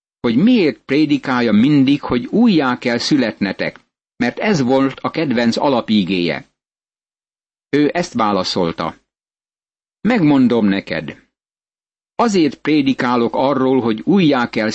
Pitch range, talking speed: 120-175 Hz, 100 wpm